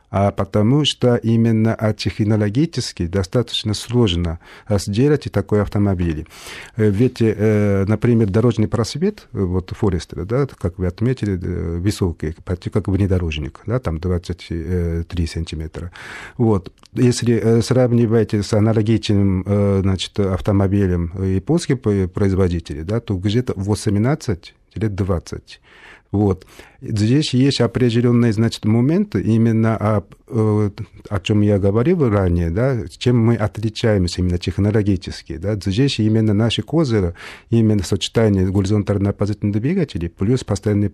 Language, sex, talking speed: Russian, male, 105 wpm